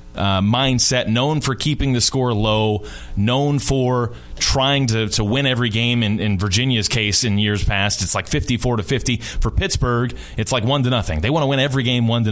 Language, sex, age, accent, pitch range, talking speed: English, male, 30-49, American, 105-140 Hz, 210 wpm